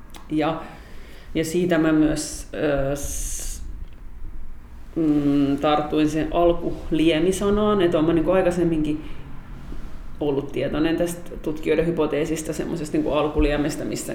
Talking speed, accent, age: 95 wpm, native, 40-59